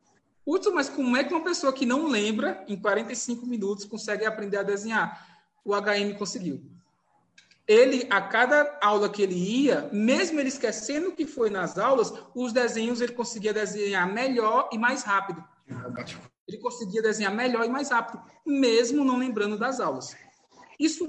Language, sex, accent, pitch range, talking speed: Portuguese, male, Brazilian, 200-260 Hz, 160 wpm